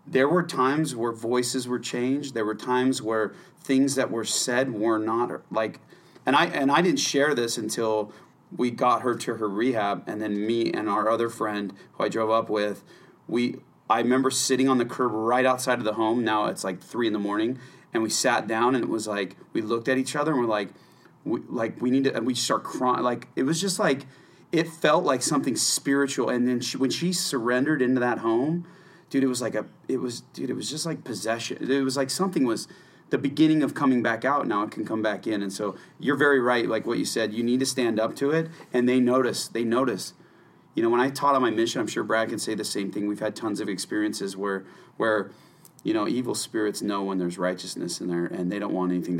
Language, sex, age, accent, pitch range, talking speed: English, male, 30-49, American, 110-135 Hz, 240 wpm